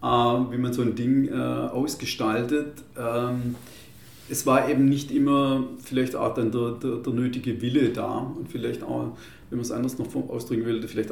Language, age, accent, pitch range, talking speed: German, 40-59, German, 115-130 Hz, 165 wpm